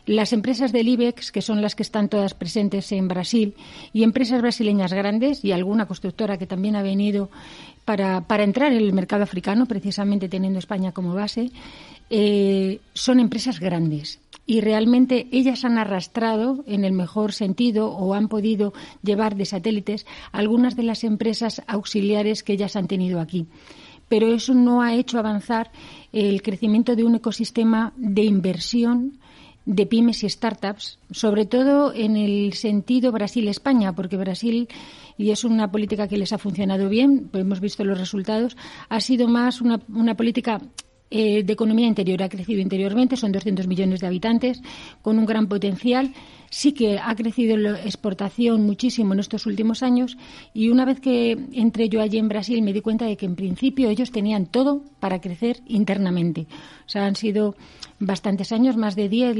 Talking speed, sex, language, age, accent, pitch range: 170 wpm, female, Spanish, 40-59, Spanish, 200-235 Hz